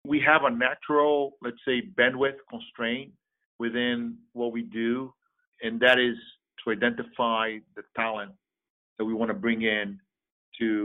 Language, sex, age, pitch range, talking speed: English, male, 50-69, 110-125 Hz, 145 wpm